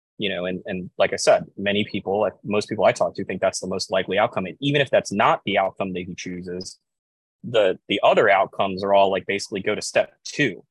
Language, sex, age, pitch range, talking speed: English, male, 20-39, 95-115 Hz, 240 wpm